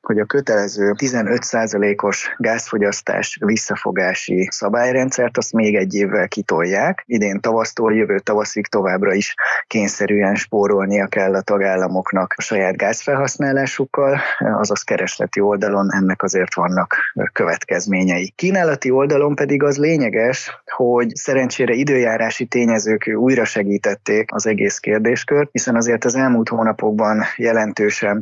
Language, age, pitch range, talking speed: Hungarian, 20-39, 100-125 Hz, 115 wpm